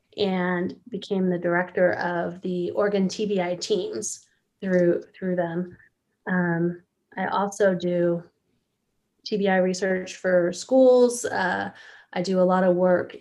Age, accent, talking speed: 20-39, American, 125 wpm